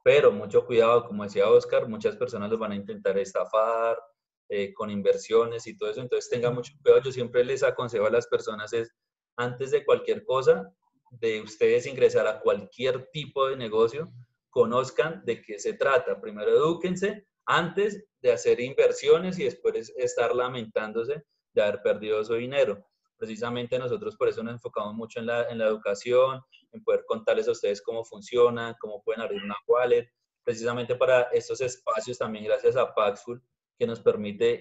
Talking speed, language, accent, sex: 170 wpm, Spanish, Colombian, male